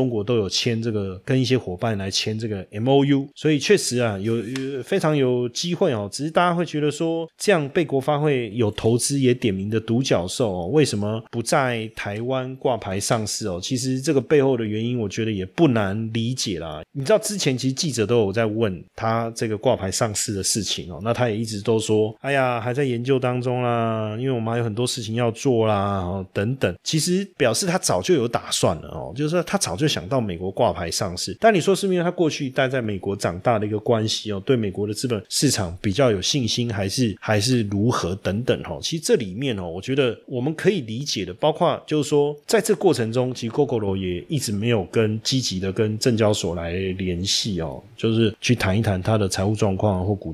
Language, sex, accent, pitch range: Chinese, male, native, 105-135 Hz